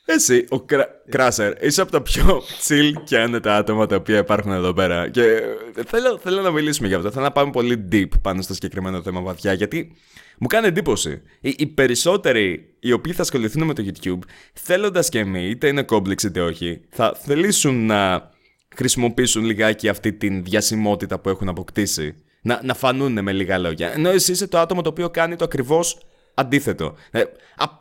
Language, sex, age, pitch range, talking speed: Greek, male, 20-39, 100-140 Hz, 185 wpm